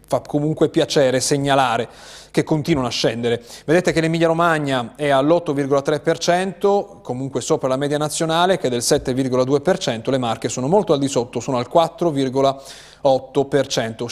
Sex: male